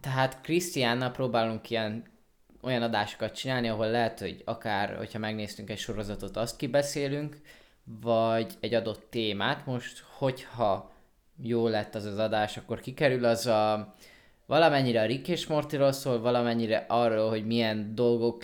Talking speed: 140 wpm